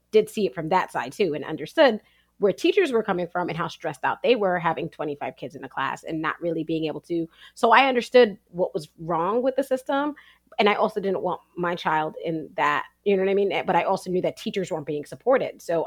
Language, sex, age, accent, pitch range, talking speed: English, female, 30-49, American, 165-210 Hz, 245 wpm